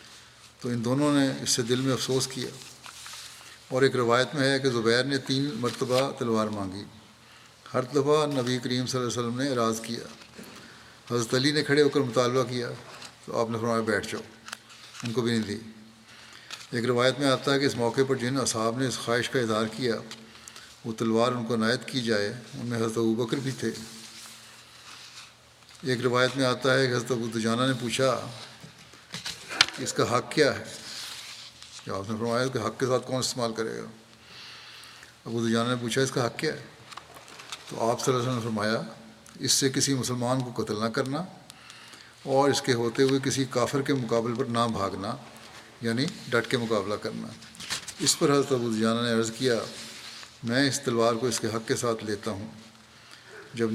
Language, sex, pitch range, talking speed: Urdu, male, 115-130 Hz, 185 wpm